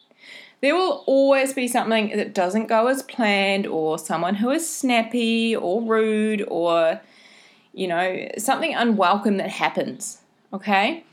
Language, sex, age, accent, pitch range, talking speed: English, female, 20-39, Australian, 190-270 Hz, 135 wpm